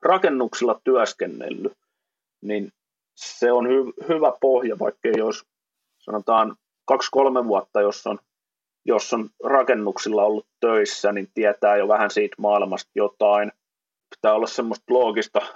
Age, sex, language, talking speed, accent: 30-49, male, Finnish, 130 wpm, native